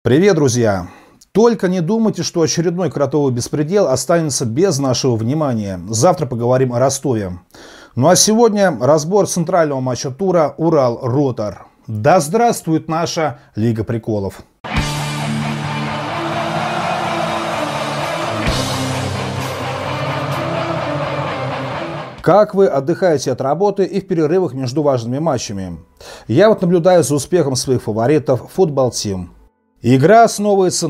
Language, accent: Russian, native